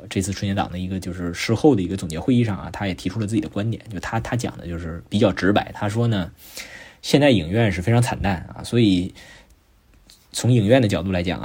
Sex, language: male, Chinese